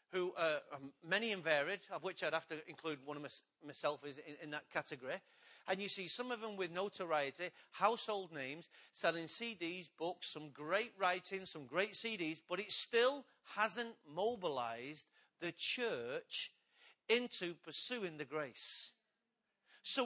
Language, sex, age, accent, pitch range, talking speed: English, male, 40-59, British, 180-265 Hz, 145 wpm